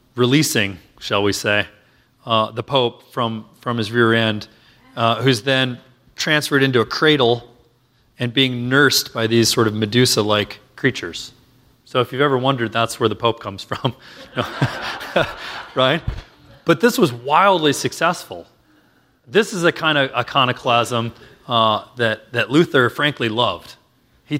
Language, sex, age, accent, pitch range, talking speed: English, male, 30-49, American, 115-145 Hz, 145 wpm